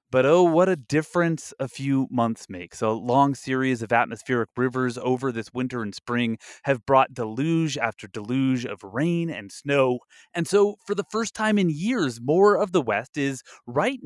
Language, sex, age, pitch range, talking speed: English, male, 30-49, 120-155 Hz, 185 wpm